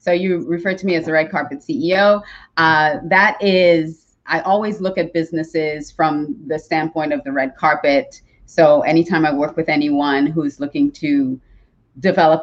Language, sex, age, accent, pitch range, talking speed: English, female, 30-49, American, 145-185 Hz, 175 wpm